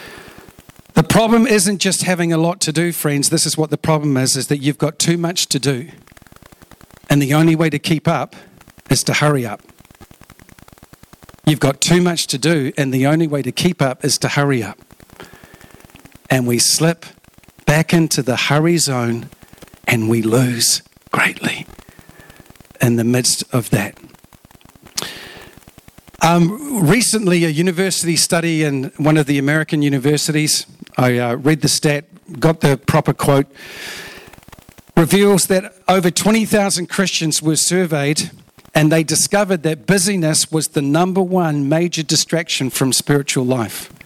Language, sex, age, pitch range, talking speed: English, male, 50-69, 140-175 Hz, 150 wpm